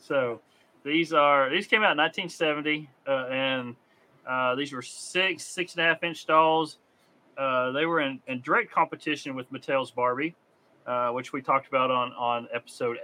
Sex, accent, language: male, American, English